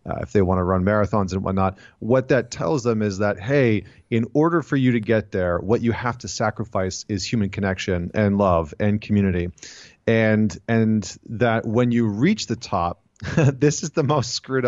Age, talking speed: 30-49, 195 wpm